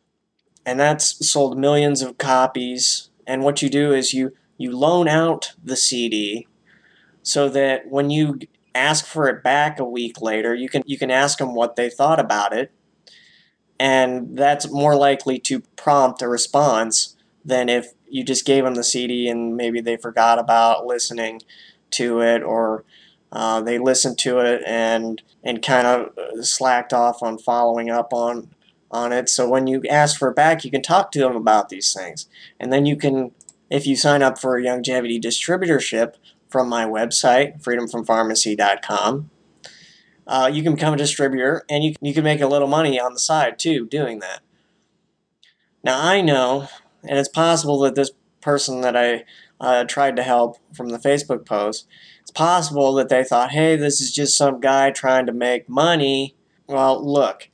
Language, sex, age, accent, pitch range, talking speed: English, male, 20-39, American, 120-145 Hz, 175 wpm